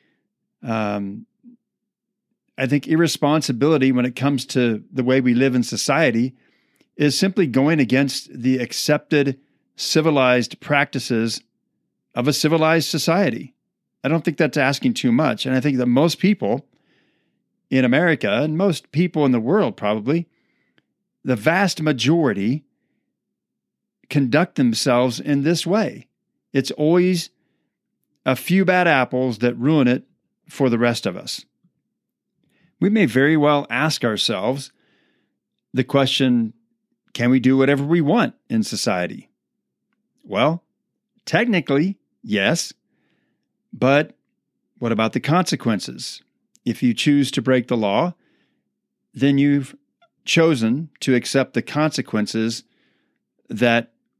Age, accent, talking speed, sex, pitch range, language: 40-59, American, 120 wpm, male, 125-170 Hz, English